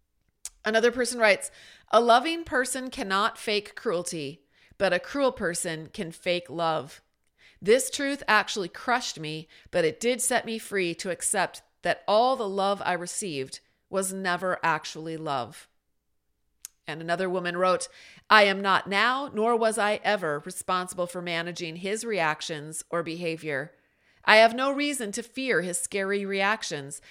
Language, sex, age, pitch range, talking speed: English, female, 40-59, 170-225 Hz, 150 wpm